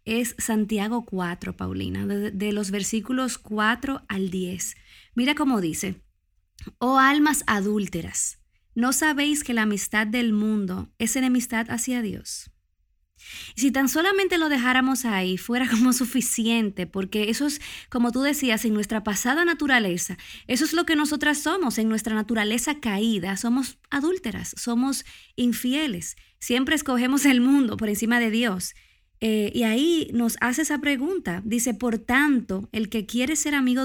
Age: 20-39